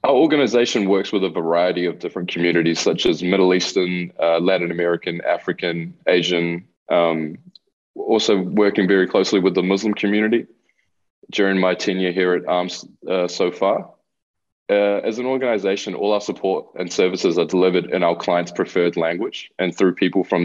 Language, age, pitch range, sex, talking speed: Bulgarian, 20-39, 85-100 Hz, male, 165 wpm